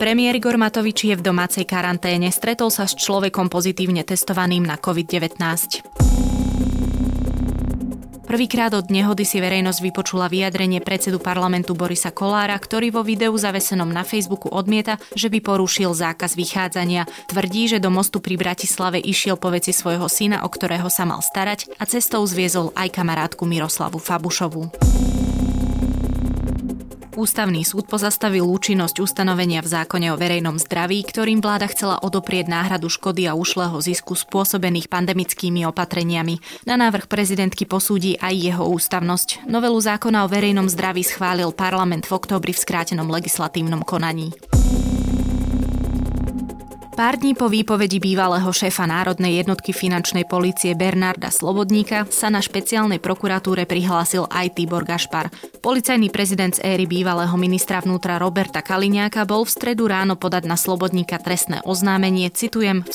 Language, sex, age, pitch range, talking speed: Slovak, female, 20-39, 170-200 Hz, 135 wpm